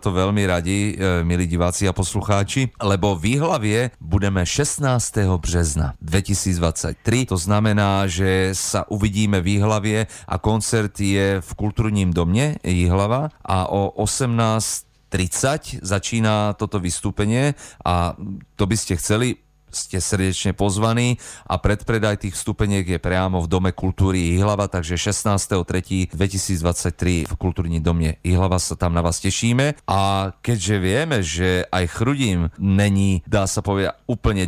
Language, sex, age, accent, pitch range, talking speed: Czech, male, 40-59, native, 90-105 Hz, 125 wpm